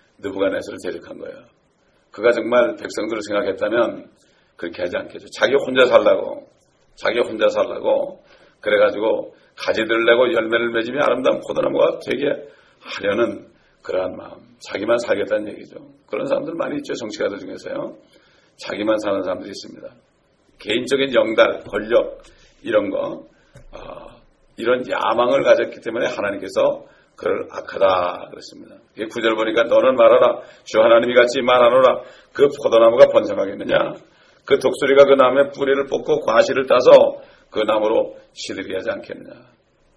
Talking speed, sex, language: 120 wpm, male, English